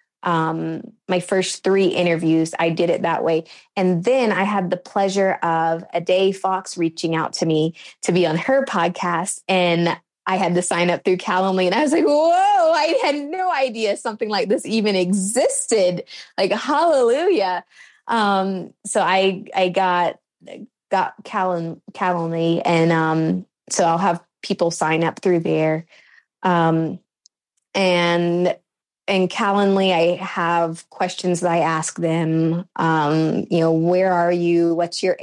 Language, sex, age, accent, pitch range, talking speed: English, female, 20-39, American, 170-195 Hz, 155 wpm